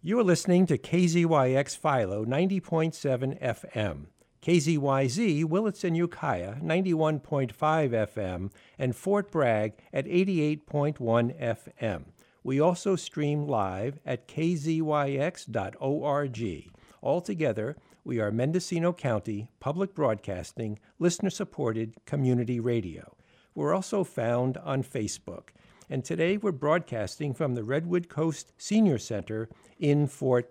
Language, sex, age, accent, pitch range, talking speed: English, male, 60-79, American, 120-175 Hz, 105 wpm